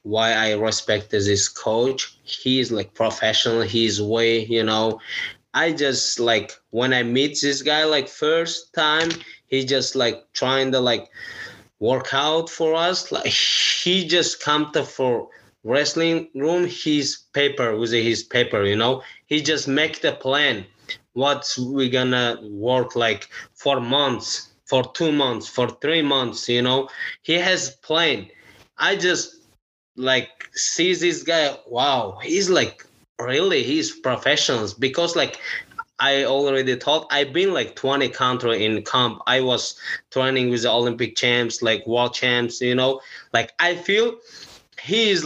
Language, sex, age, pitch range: English, male, 20-39, 120-160 Hz